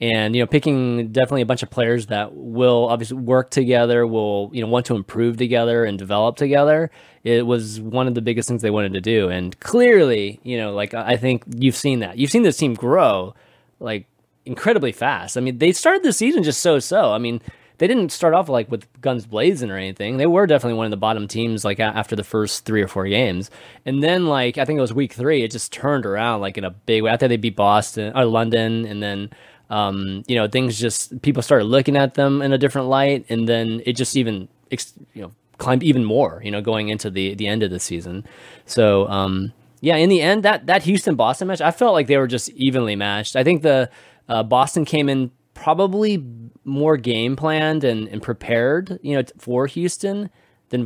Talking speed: 220 wpm